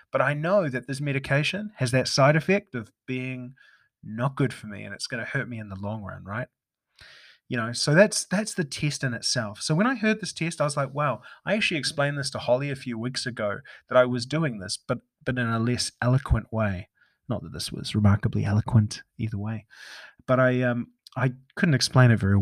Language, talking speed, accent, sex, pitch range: English, 220 wpm, Australian, male, 115-145 Hz